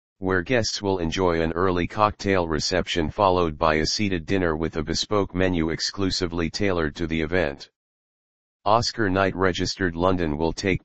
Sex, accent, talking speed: male, American, 155 wpm